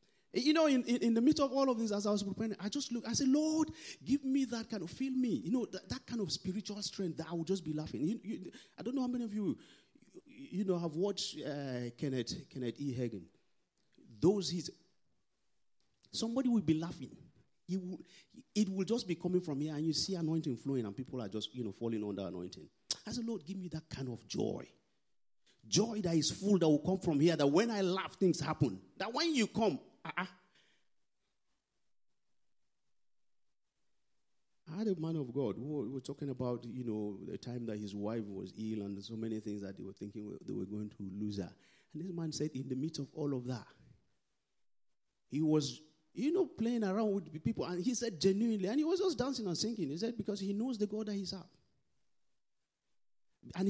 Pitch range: 135-225 Hz